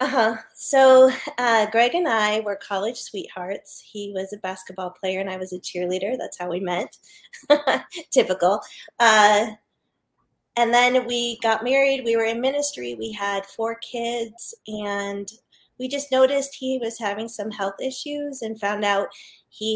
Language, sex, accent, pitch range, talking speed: English, female, American, 190-225 Hz, 160 wpm